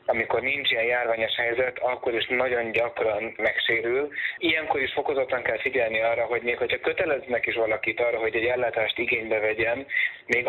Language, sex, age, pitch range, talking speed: Hungarian, male, 20-39, 115-130 Hz, 165 wpm